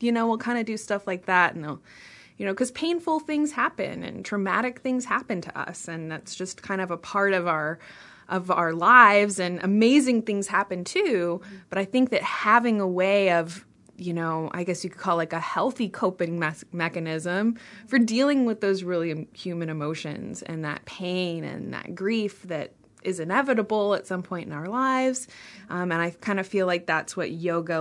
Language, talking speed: English, 195 wpm